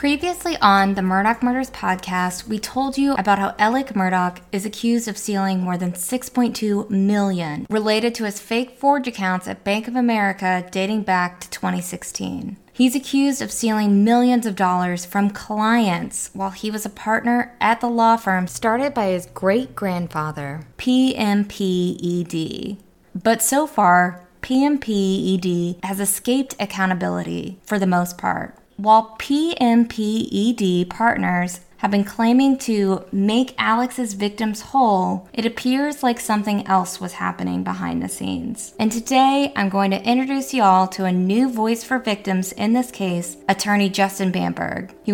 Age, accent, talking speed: 20-39, American, 145 wpm